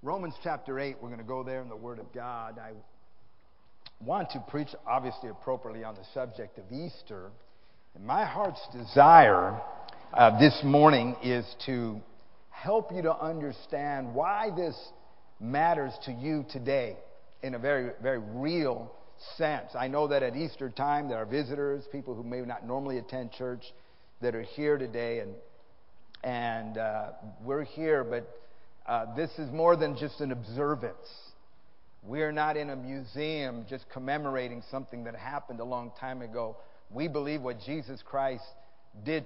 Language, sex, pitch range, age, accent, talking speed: English, male, 120-150 Hz, 50-69, American, 155 wpm